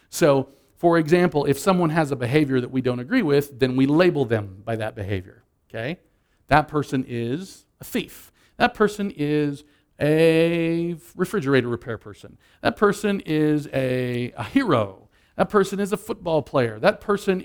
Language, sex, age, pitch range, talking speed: English, male, 50-69, 120-160 Hz, 160 wpm